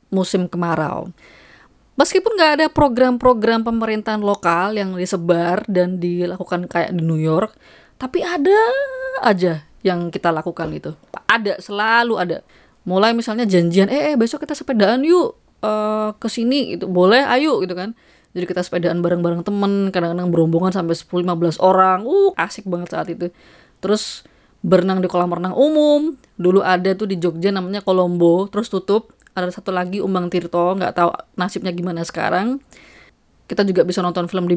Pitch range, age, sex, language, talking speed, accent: 180-230 Hz, 20-39, female, Indonesian, 155 wpm, native